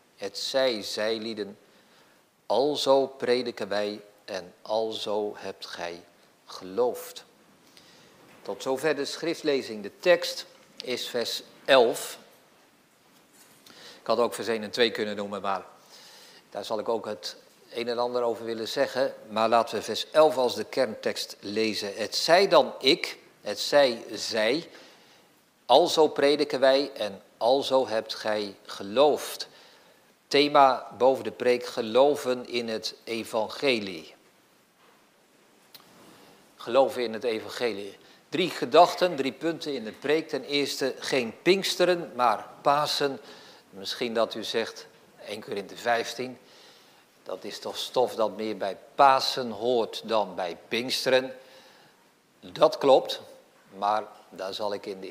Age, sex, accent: 50-69, male, Dutch